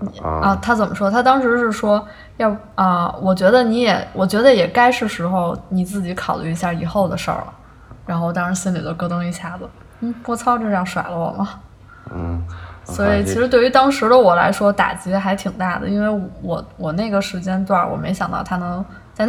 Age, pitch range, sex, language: 20-39, 175-205 Hz, female, Chinese